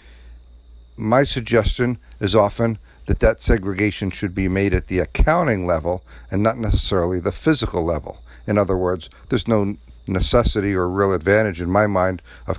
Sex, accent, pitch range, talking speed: male, American, 70-105 Hz, 155 wpm